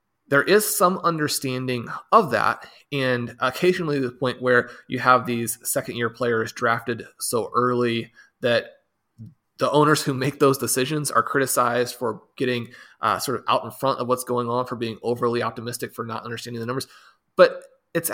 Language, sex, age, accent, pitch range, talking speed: English, male, 30-49, American, 125-150 Hz, 170 wpm